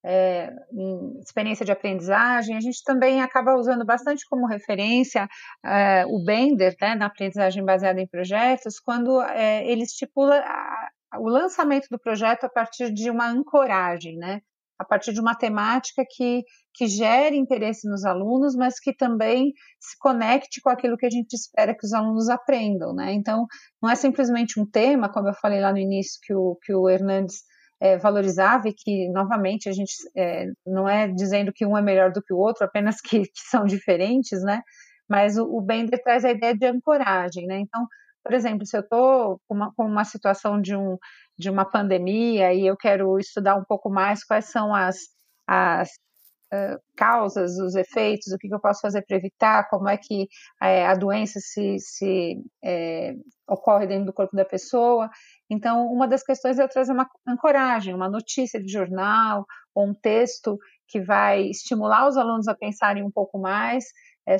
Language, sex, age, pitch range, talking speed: Portuguese, female, 30-49, 195-245 Hz, 175 wpm